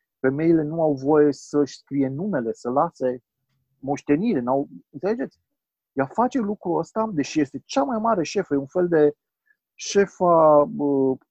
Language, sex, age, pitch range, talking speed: Romanian, male, 40-59, 120-170 Hz, 140 wpm